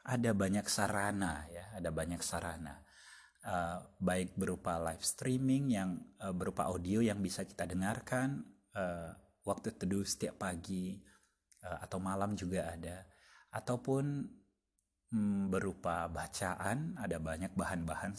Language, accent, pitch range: Indonesian, native, 85-120 Hz